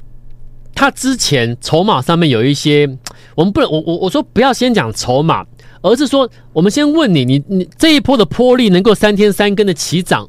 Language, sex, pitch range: Chinese, male, 140-210 Hz